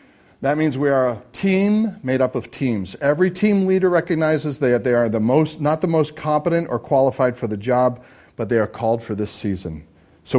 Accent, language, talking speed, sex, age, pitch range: American, English, 210 wpm, male, 40-59, 115-150 Hz